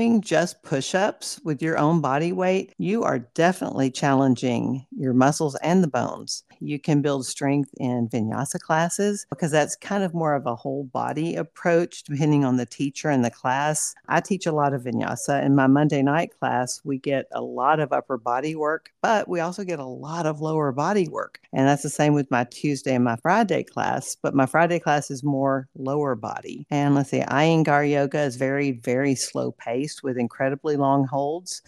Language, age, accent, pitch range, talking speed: English, 50-69, American, 130-160 Hz, 195 wpm